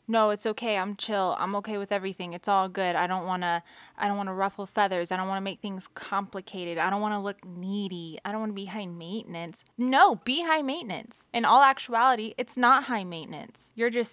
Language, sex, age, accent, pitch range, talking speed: English, female, 20-39, American, 190-220 Hz, 230 wpm